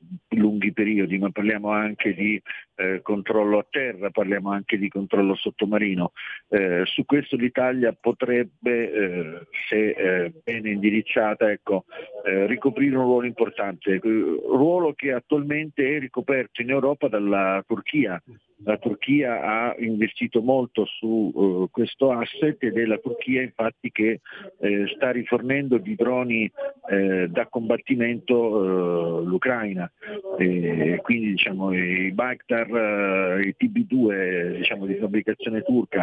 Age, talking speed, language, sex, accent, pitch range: 50-69, 130 wpm, Italian, male, native, 100-120 Hz